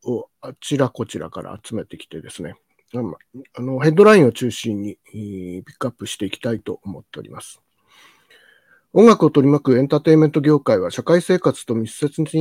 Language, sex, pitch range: Japanese, male, 120-165 Hz